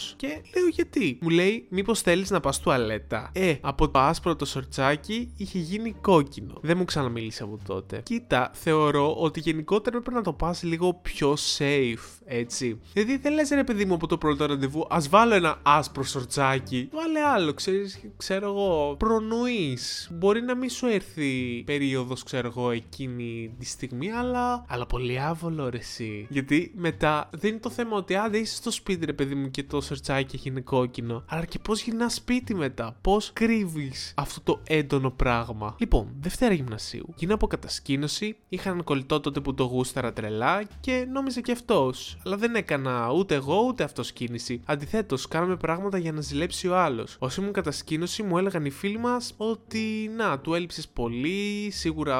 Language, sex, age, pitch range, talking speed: Greek, male, 20-39, 135-210 Hz, 175 wpm